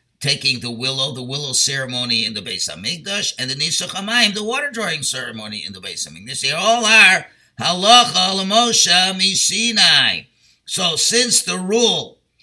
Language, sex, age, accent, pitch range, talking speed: English, male, 50-69, American, 130-190 Hz, 150 wpm